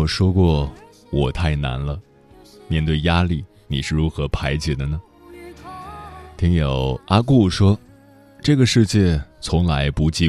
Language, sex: Chinese, male